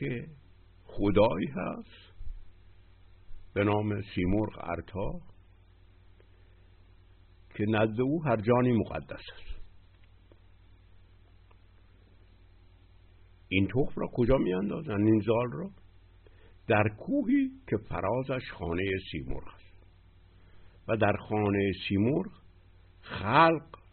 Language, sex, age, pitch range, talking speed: Persian, male, 60-79, 90-105 Hz, 85 wpm